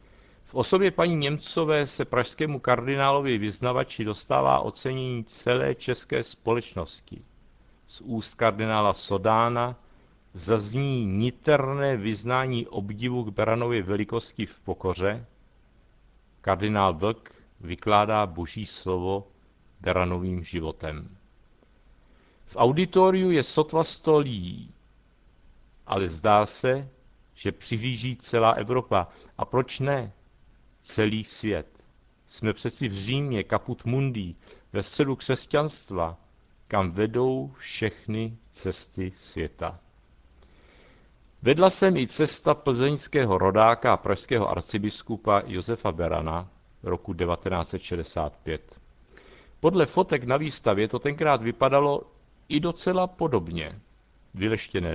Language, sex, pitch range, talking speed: Czech, male, 95-130 Hz, 95 wpm